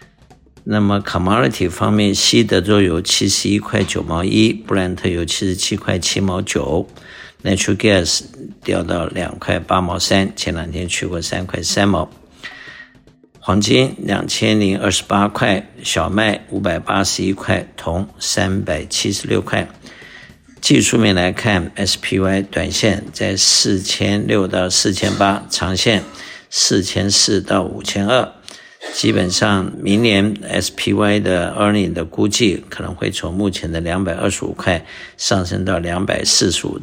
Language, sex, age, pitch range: Chinese, male, 60-79, 90-105 Hz